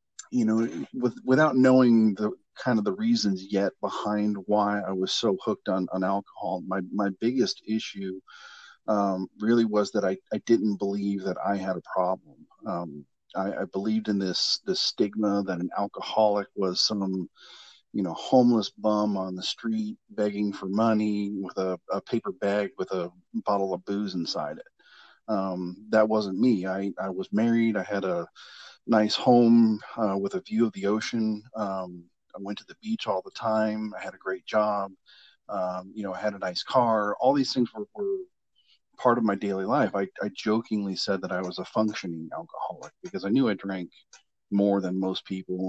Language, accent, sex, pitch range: English, American, male, 95-110 Hz